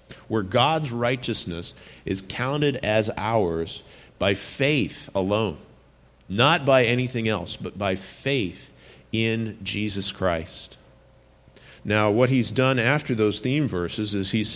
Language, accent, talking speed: English, American, 125 wpm